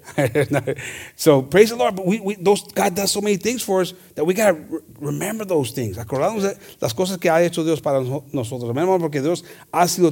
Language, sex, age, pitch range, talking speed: English, male, 40-59, 140-210 Hz, 225 wpm